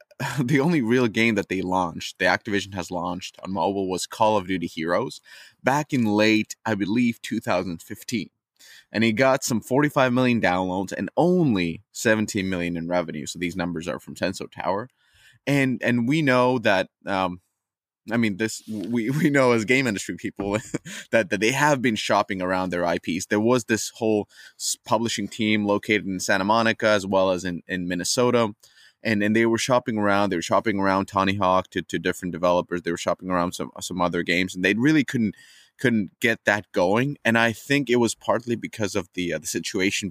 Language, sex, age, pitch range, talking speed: English, male, 20-39, 90-115 Hz, 195 wpm